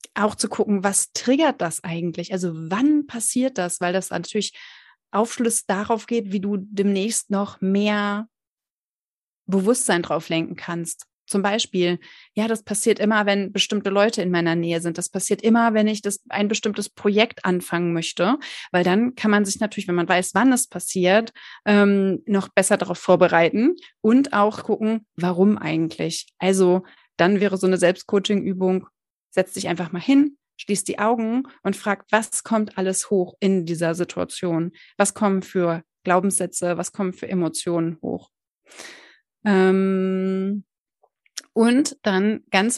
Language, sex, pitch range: German, female, 180-215 Hz